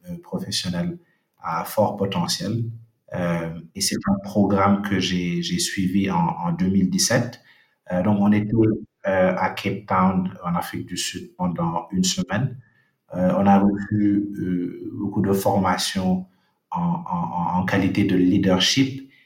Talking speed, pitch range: 140 wpm, 95-115 Hz